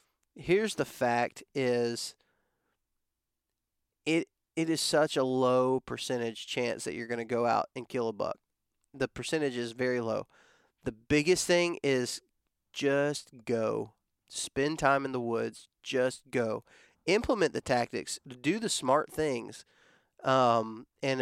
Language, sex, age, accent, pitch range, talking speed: English, male, 30-49, American, 120-145 Hz, 140 wpm